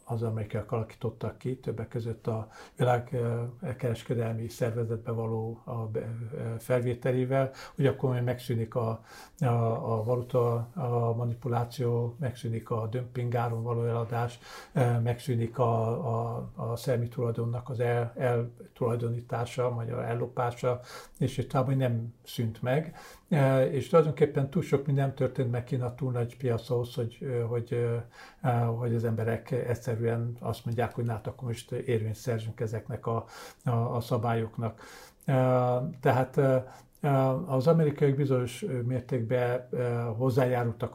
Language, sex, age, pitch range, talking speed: English, male, 50-69, 115-130 Hz, 125 wpm